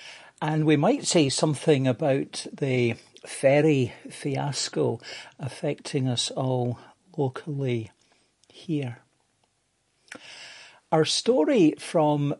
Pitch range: 125-155 Hz